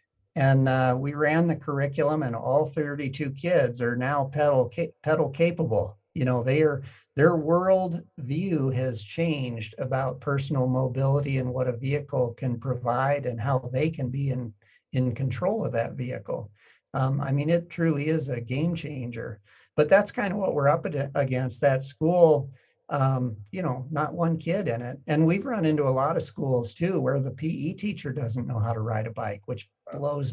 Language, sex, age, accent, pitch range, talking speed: English, male, 50-69, American, 125-155 Hz, 185 wpm